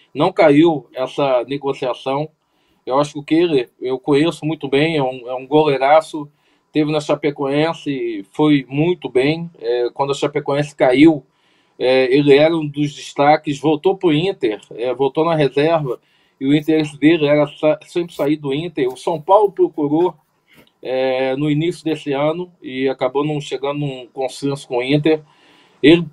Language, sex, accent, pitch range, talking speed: Portuguese, male, Brazilian, 140-165 Hz, 165 wpm